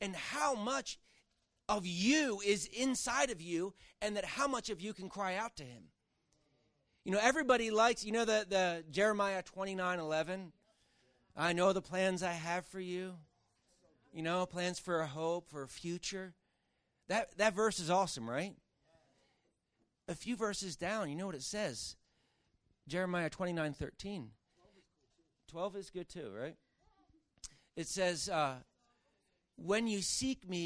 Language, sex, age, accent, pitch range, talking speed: English, male, 40-59, American, 155-200 Hz, 155 wpm